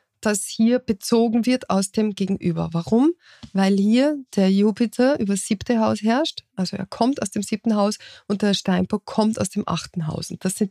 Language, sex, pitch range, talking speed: German, female, 185-225 Hz, 195 wpm